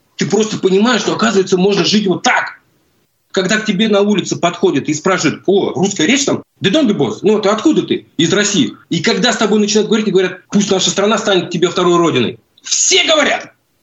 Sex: male